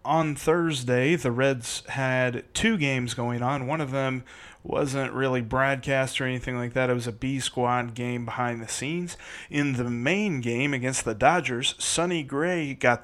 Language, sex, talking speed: English, male, 170 wpm